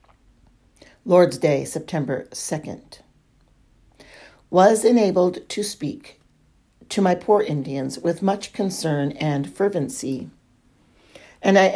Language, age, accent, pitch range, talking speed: English, 50-69, American, 145-205 Hz, 95 wpm